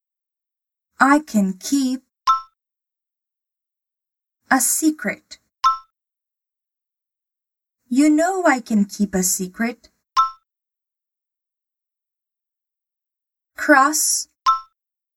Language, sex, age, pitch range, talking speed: Portuguese, female, 20-39, 220-290 Hz, 50 wpm